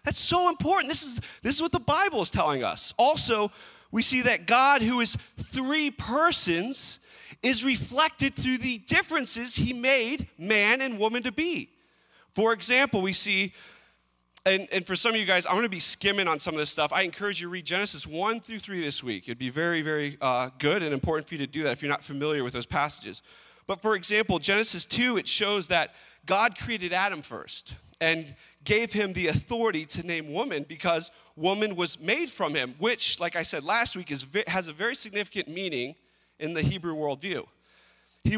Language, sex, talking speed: English, male, 200 wpm